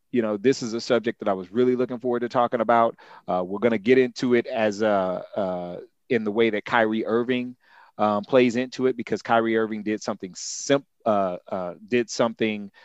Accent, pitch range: American, 95-120 Hz